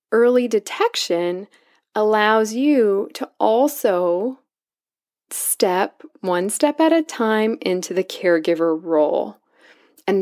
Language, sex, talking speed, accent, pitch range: English, female, 100 wpm, American, 175-235 Hz